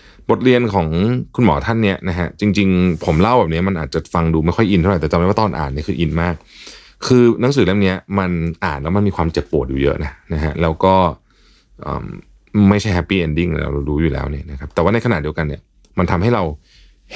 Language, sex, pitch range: Thai, male, 75-95 Hz